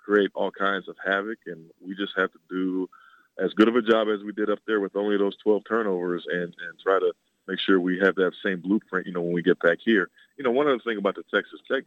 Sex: male